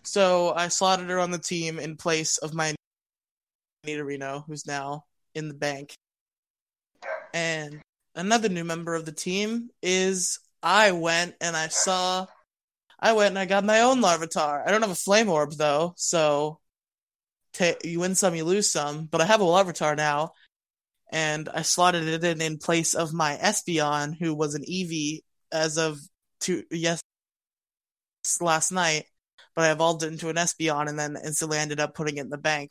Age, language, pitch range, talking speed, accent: 20-39, English, 155-180 Hz, 175 wpm, American